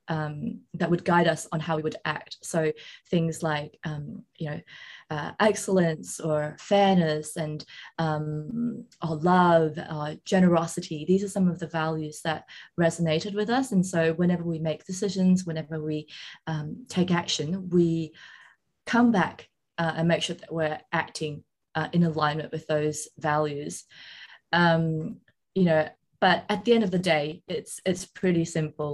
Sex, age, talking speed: female, 20-39, 160 wpm